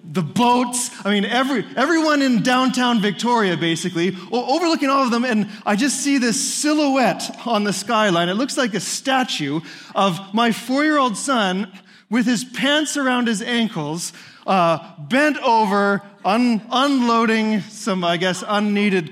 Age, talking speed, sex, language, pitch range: 20-39, 150 wpm, male, English, 180-250 Hz